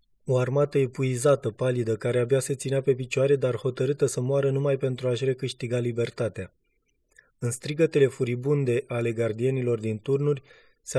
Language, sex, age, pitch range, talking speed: Romanian, male, 20-39, 120-140 Hz, 145 wpm